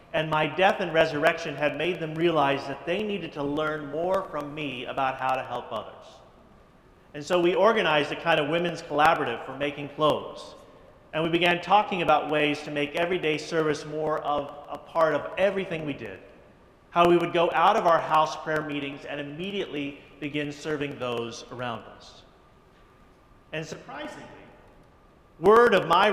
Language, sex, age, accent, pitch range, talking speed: English, male, 40-59, American, 140-170 Hz, 170 wpm